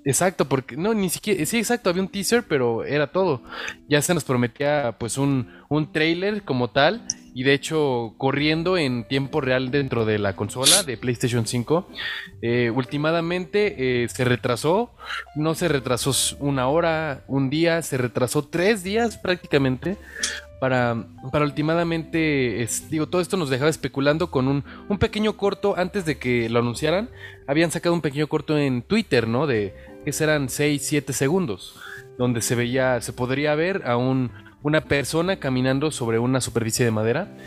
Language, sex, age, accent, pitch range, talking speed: Spanish, male, 20-39, Mexican, 120-165 Hz, 165 wpm